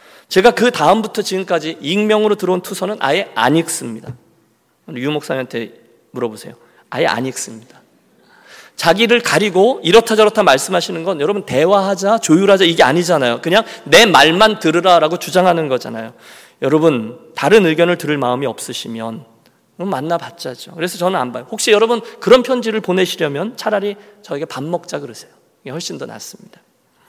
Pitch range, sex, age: 165-230 Hz, male, 40-59